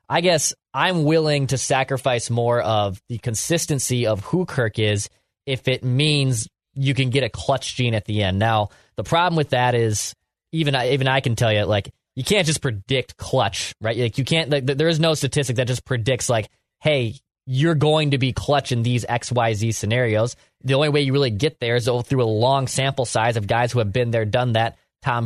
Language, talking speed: English, 215 wpm